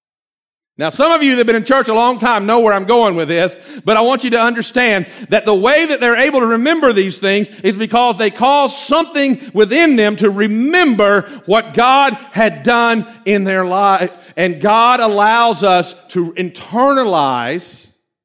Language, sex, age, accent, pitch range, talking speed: English, male, 50-69, American, 190-255 Hz, 185 wpm